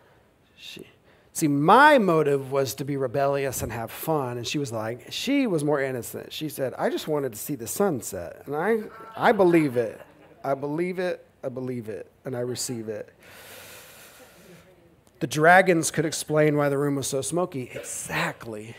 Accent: American